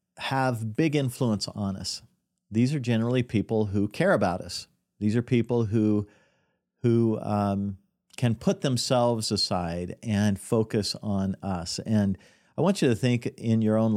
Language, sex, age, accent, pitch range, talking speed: English, male, 50-69, American, 100-120 Hz, 155 wpm